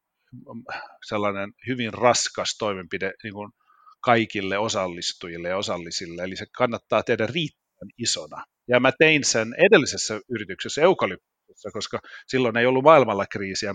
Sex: male